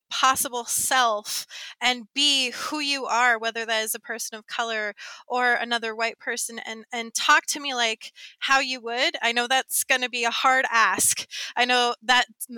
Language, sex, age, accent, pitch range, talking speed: English, female, 20-39, American, 215-250 Hz, 185 wpm